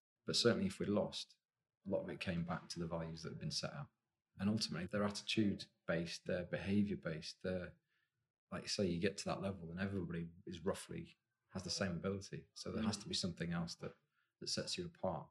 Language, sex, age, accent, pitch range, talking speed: English, male, 30-49, British, 90-115 Hz, 220 wpm